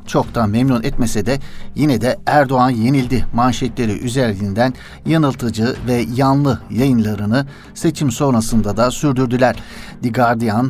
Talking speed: 110 wpm